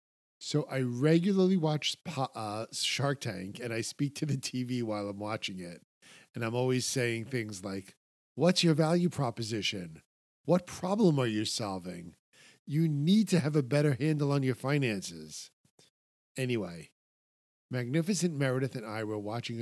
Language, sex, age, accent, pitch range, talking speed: English, male, 50-69, American, 105-140 Hz, 150 wpm